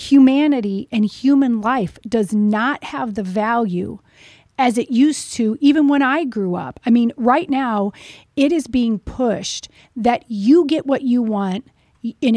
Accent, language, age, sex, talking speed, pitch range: American, English, 40-59, female, 160 wpm, 220-275 Hz